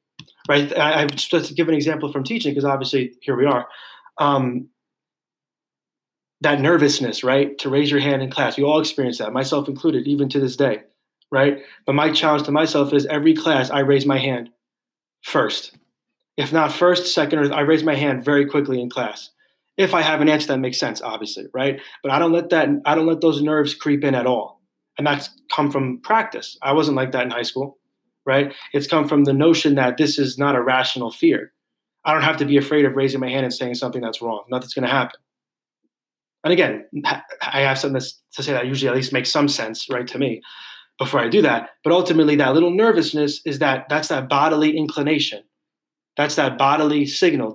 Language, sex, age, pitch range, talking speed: English, male, 20-39, 135-155 Hz, 210 wpm